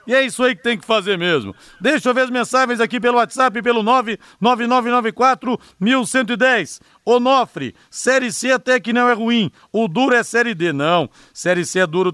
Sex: male